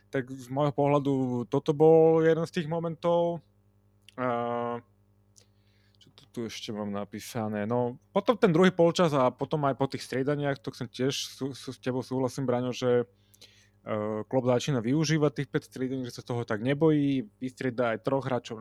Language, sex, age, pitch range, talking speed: Slovak, male, 20-39, 115-135 Hz, 165 wpm